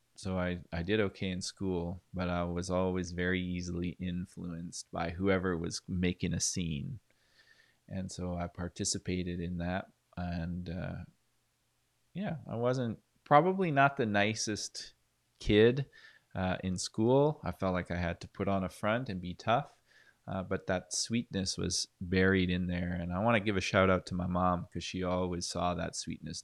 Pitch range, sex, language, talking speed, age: 85-105 Hz, male, English, 175 wpm, 20-39